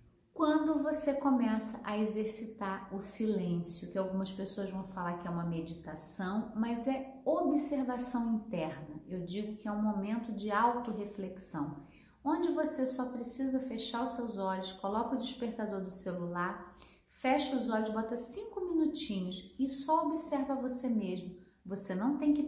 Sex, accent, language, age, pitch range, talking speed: female, Brazilian, Portuguese, 40-59, 195-260 Hz, 150 wpm